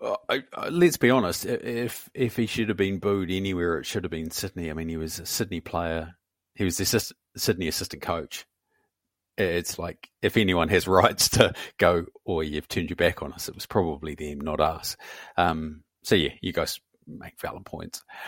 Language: English